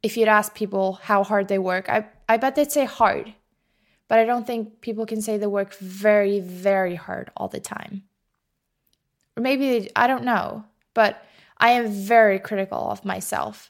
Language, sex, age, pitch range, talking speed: English, female, 20-39, 200-230 Hz, 185 wpm